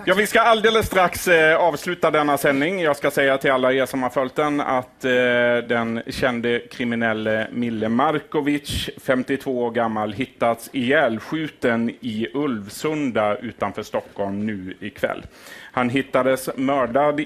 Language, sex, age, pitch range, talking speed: Swedish, male, 30-49, 115-150 Hz, 140 wpm